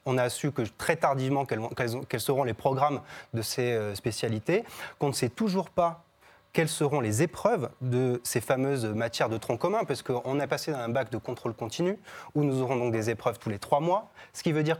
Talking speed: 215 wpm